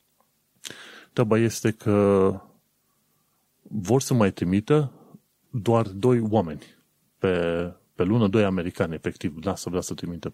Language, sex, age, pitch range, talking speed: Romanian, male, 30-49, 95-115 Hz, 110 wpm